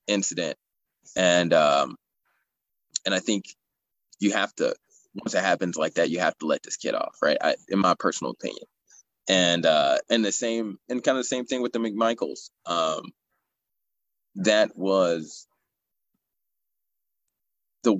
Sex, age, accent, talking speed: male, 20-39, American, 145 wpm